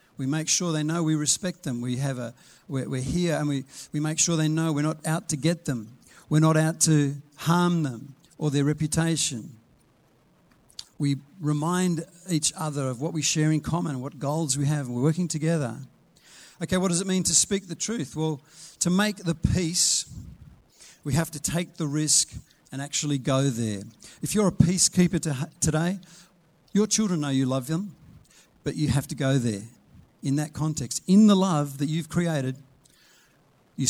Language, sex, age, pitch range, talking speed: English, male, 50-69, 145-170 Hz, 185 wpm